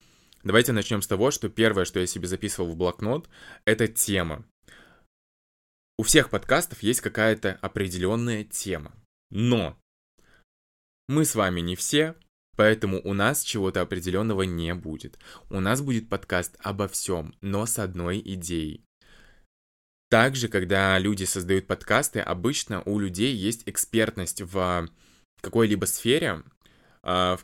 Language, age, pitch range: Russian, 20-39, 95-110 Hz